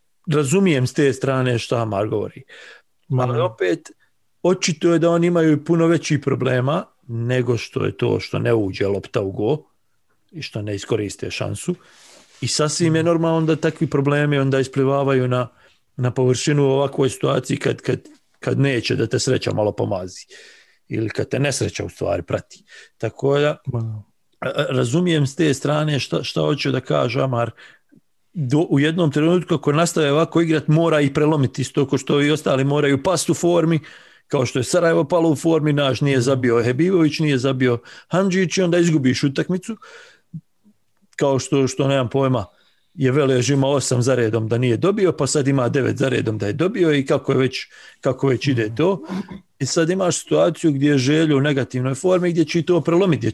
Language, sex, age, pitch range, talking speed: English, male, 40-59, 130-165 Hz, 175 wpm